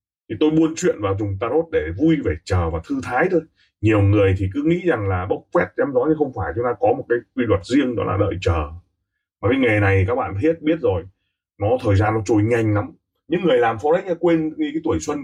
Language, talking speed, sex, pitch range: Vietnamese, 255 wpm, male, 95-155 Hz